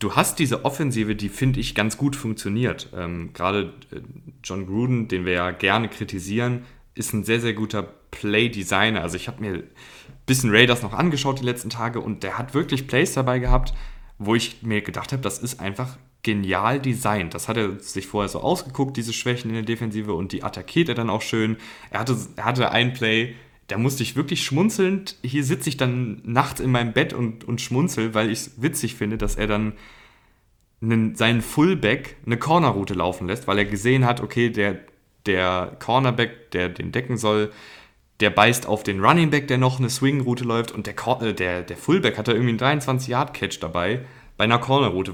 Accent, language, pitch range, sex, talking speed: German, German, 105-130 Hz, male, 195 wpm